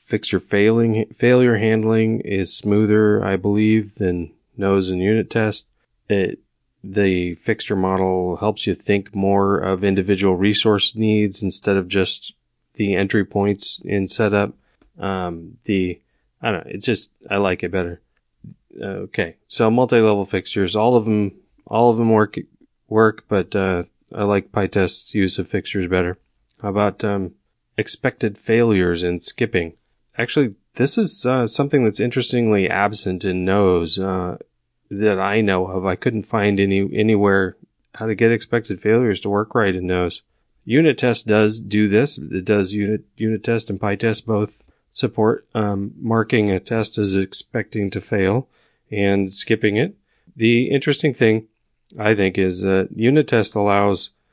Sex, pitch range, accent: male, 95-110 Hz, American